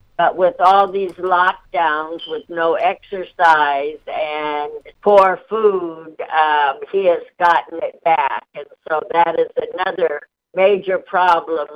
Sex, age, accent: female, 60-79, American